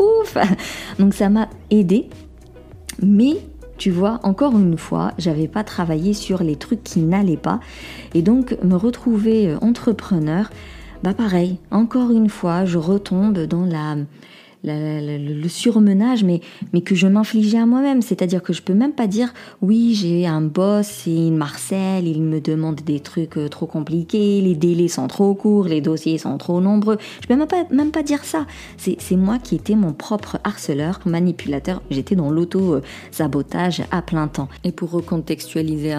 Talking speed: 175 wpm